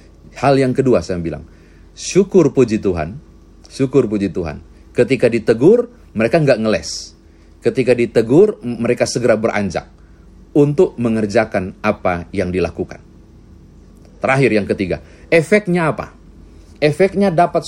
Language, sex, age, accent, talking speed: Indonesian, male, 50-69, native, 110 wpm